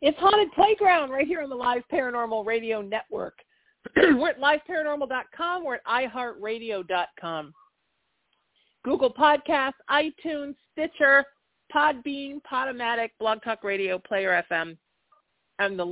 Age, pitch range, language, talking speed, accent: 50-69, 165-245 Hz, English, 115 wpm, American